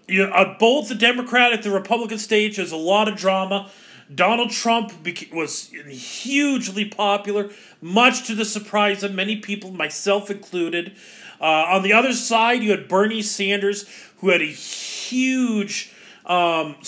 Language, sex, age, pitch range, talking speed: English, male, 40-59, 180-215 Hz, 150 wpm